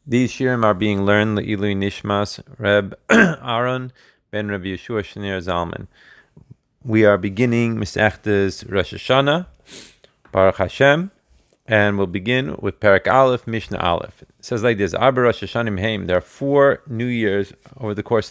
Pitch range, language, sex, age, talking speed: 100-120 Hz, Hebrew, male, 30-49, 150 wpm